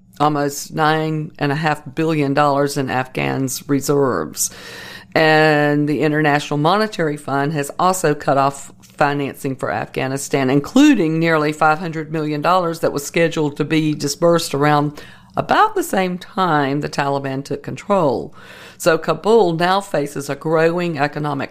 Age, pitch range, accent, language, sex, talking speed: 50-69, 140-175 Hz, American, English, female, 125 wpm